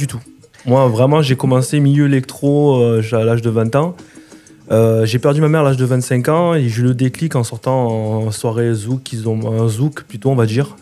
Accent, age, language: French, 20-39, French